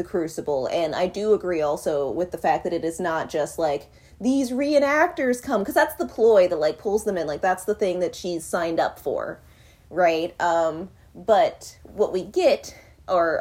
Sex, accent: female, American